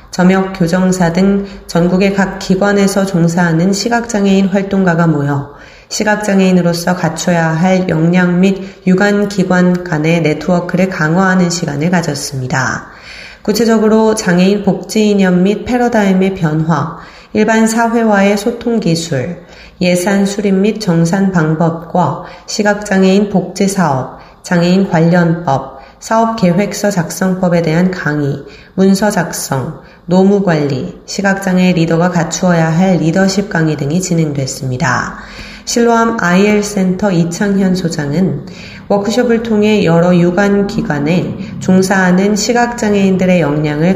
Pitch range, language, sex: 165-200 Hz, Korean, female